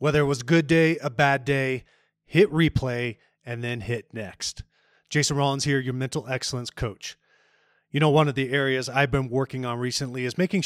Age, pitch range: 30-49, 125-150 Hz